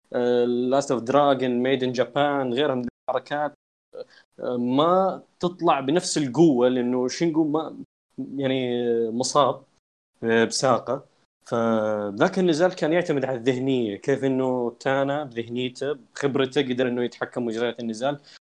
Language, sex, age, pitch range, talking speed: Arabic, male, 20-39, 120-160 Hz, 115 wpm